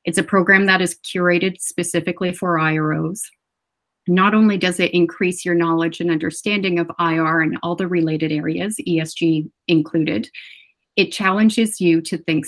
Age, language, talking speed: 30-49, English, 155 wpm